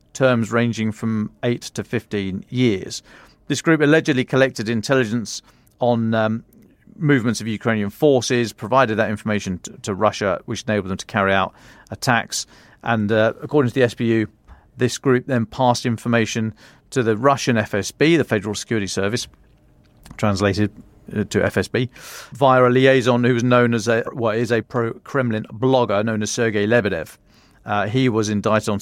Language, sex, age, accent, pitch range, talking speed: English, male, 40-59, British, 110-125 Hz, 155 wpm